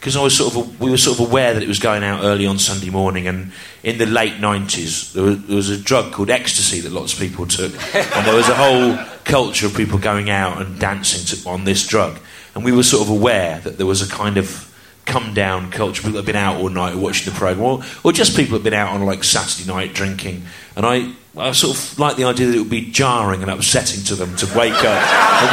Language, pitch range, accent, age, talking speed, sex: English, 100-135 Hz, British, 30-49, 255 wpm, male